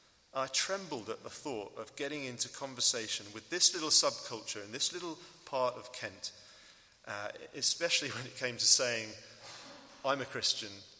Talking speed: 160 wpm